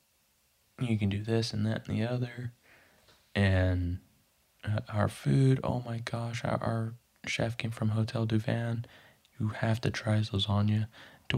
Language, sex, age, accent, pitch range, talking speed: English, male, 20-39, American, 100-125 Hz, 150 wpm